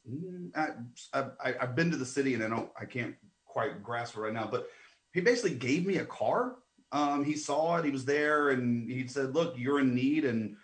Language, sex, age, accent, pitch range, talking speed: English, male, 30-49, American, 115-150 Hz, 225 wpm